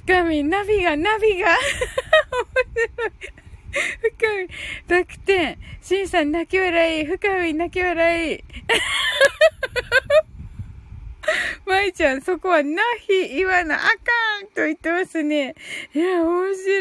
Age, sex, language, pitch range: 20-39, female, Japanese, 315-405 Hz